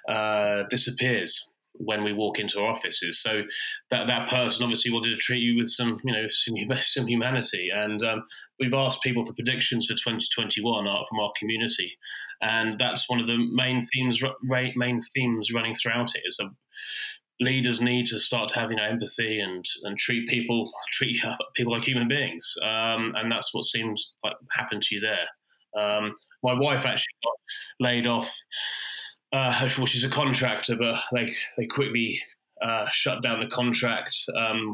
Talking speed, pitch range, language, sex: 175 wpm, 115-125 Hz, English, male